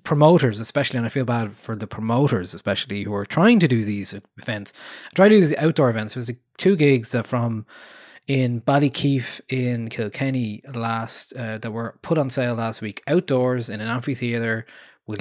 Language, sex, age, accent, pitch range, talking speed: English, male, 20-39, Irish, 110-130 Hz, 185 wpm